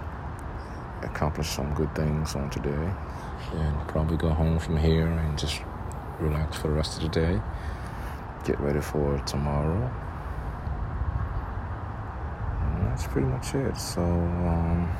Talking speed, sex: 130 wpm, male